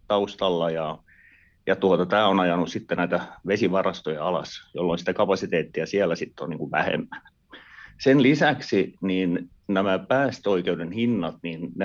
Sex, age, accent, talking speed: male, 30-49, native, 135 wpm